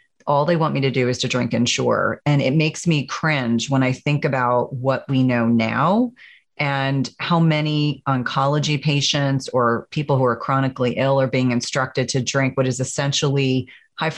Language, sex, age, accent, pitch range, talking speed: English, female, 30-49, American, 130-150 Hz, 180 wpm